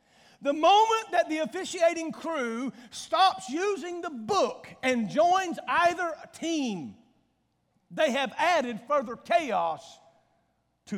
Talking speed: 110 wpm